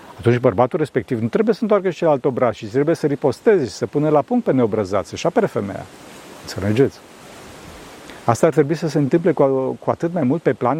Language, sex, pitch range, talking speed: Romanian, male, 120-160 Hz, 210 wpm